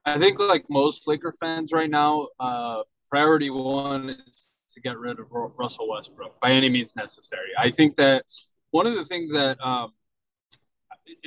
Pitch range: 125-150 Hz